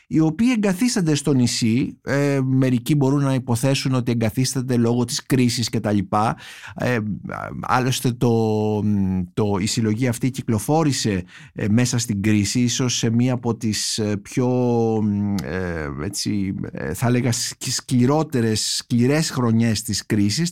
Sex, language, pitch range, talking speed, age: male, Greek, 115-145 Hz, 110 wpm, 50-69